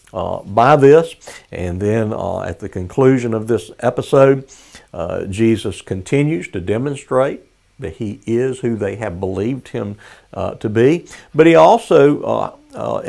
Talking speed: 150 wpm